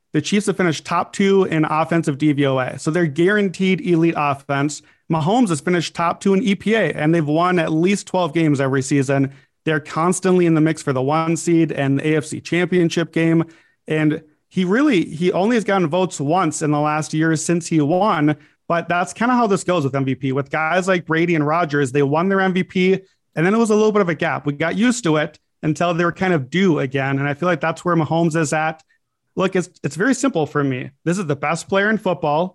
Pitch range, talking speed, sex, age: 150-185 Hz, 230 wpm, male, 30-49